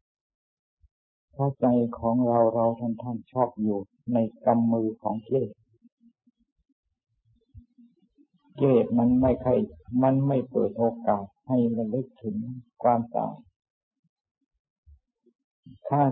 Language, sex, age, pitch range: Thai, male, 60-79, 110-135 Hz